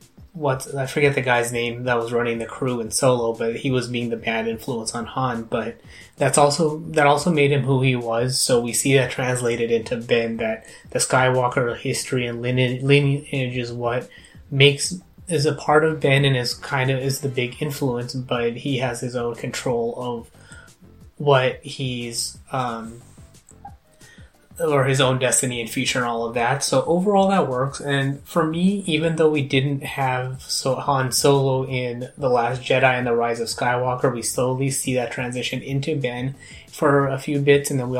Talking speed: 185 wpm